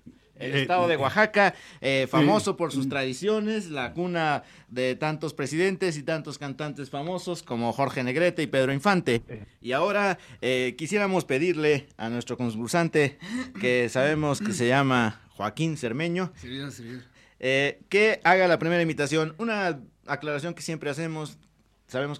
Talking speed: 140 wpm